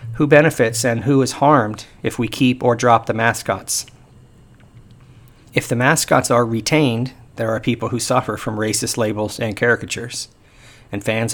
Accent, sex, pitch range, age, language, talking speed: American, male, 110-125 Hz, 40-59, English, 160 wpm